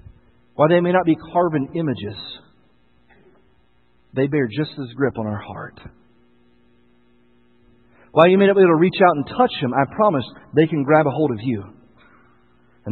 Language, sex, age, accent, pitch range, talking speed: English, male, 40-59, American, 130-175 Hz, 170 wpm